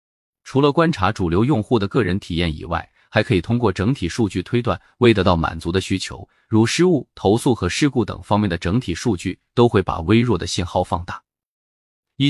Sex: male